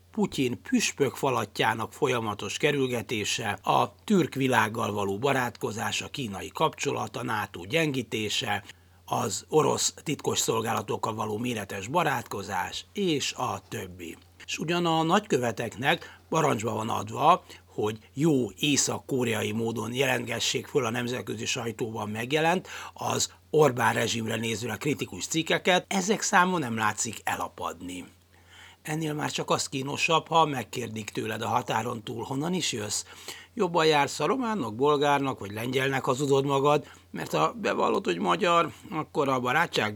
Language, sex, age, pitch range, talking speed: Hungarian, male, 60-79, 110-150 Hz, 130 wpm